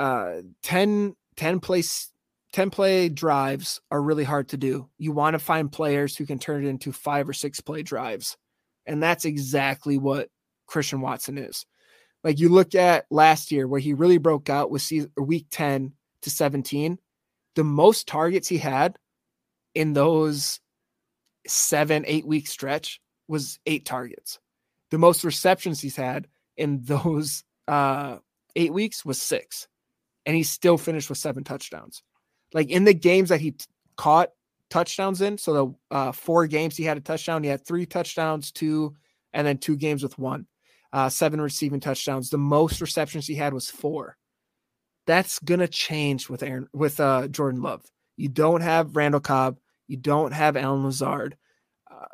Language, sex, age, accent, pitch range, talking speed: English, male, 20-39, American, 140-165 Hz, 170 wpm